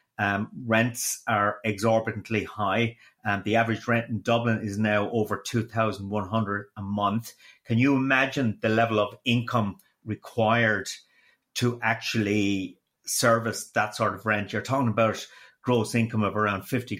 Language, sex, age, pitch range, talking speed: English, male, 30-49, 110-120 Hz, 155 wpm